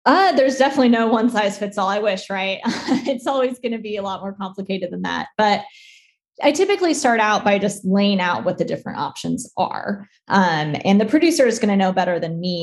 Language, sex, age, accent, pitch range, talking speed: English, female, 20-39, American, 185-230 Hz, 225 wpm